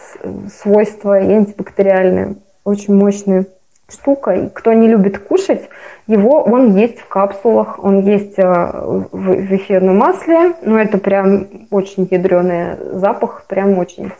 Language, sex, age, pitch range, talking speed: Russian, female, 20-39, 195-220 Hz, 125 wpm